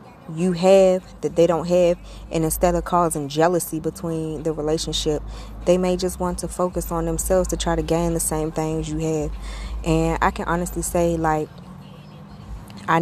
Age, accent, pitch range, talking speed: 20-39, American, 145-165 Hz, 175 wpm